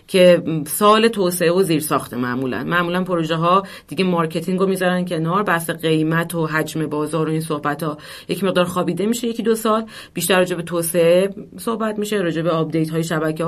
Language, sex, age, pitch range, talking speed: Persian, female, 30-49, 165-200 Hz, 185 wpm